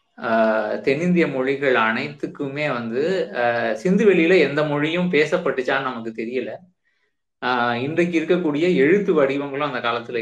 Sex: male